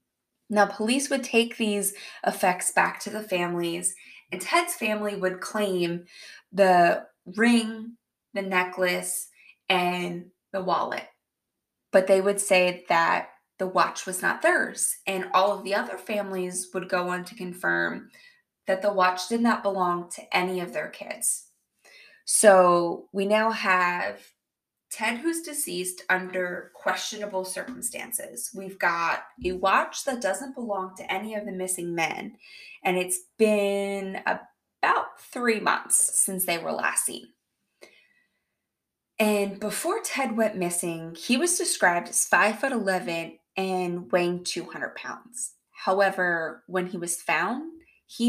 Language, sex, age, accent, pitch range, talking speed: English, female, 20-39, American, 180-225 Hz, 135 wpm